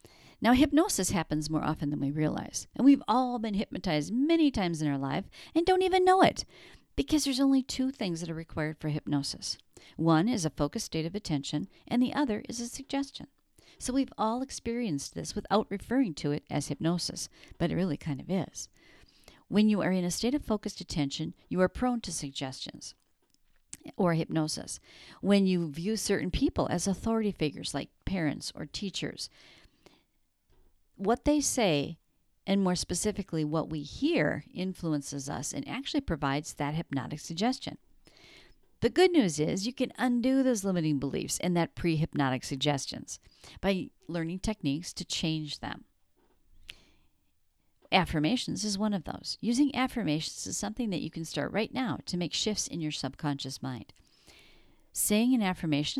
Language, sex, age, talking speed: English, female, 50-69, 165 wpm